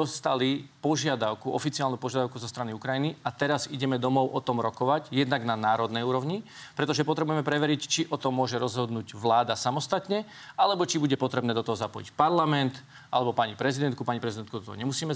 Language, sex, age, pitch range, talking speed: Slovak, male, 40-59, 125-155 Hz, 175 wpm